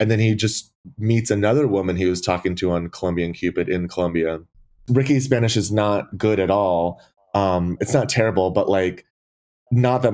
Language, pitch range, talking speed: English, 95-120 Hz, 185 wpm